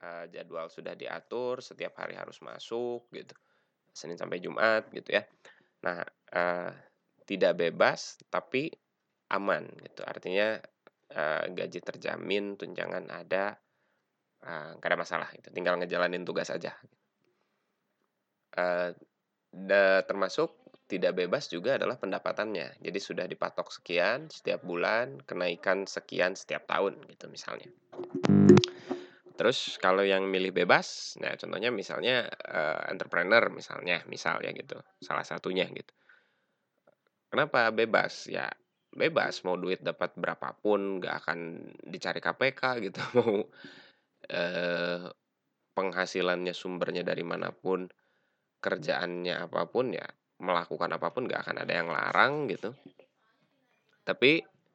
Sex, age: male, 20-39